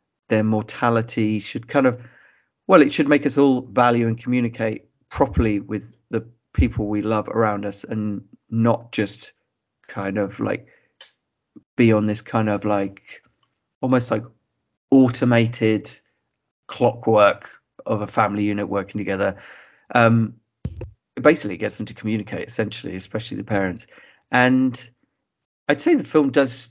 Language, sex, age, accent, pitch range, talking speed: English, male, 30-49, British, 110-125 Hz, 135 wpm